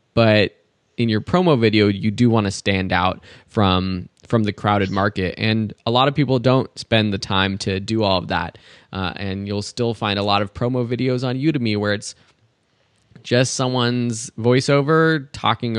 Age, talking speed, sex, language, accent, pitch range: 20-39, 180 wpm, male, English, American, 105-130 Hz